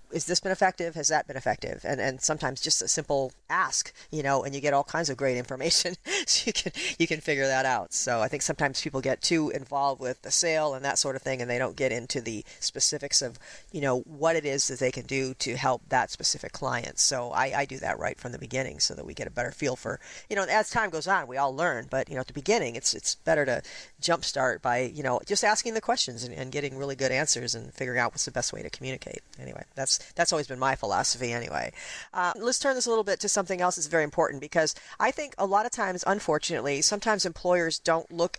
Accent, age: American, 40-59